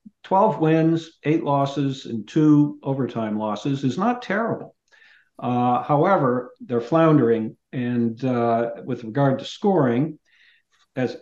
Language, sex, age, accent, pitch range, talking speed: English, male, 60-79, American, 120-155 Hz, 120 wpm